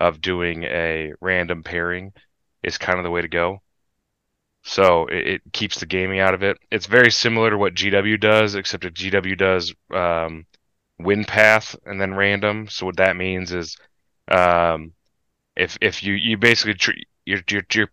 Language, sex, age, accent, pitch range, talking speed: English, male, 30-49, American, 90-105 Hz, 175 wpm